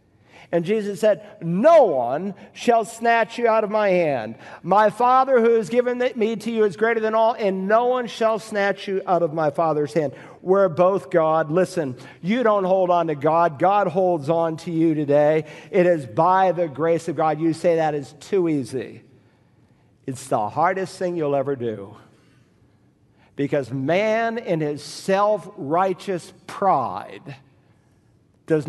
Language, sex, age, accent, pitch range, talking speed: English, male, 50-69, American, 150-210 Hz, 165 wpm